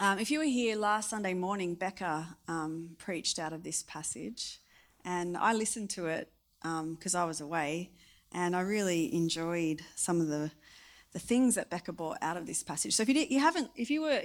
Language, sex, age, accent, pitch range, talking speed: English, female, 30-49, Australian, 165-260 Hz, 210 wpm